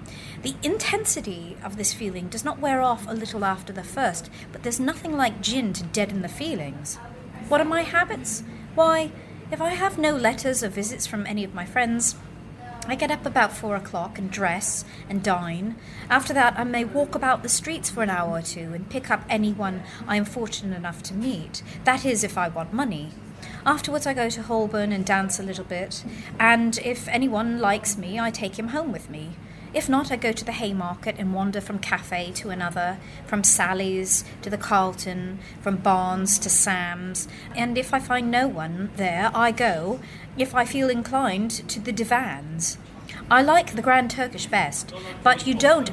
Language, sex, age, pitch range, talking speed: English, female, 30-49, 185-255 Hz, 190 wpm